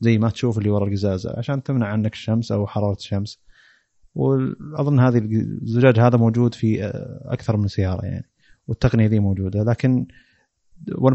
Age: 30-49